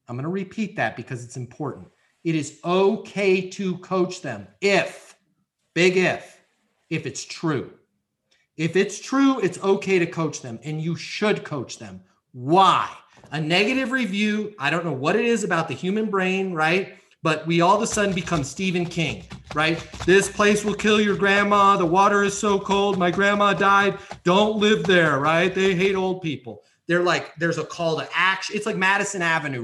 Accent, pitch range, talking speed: American, 140-195 Hz, 185 wpm